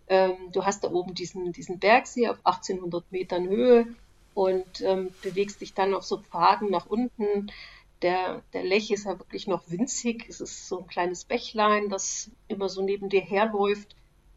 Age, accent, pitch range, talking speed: 50-69, German, 190-225 Hz, 170 wpm